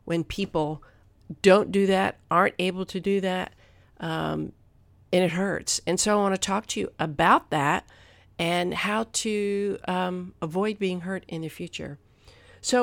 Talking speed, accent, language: 165 wpm, American, English